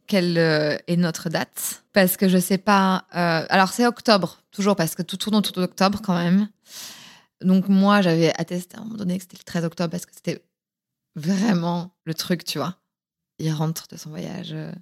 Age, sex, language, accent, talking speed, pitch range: 20-39, female, French, French, 195 wpm, 175-210 Hz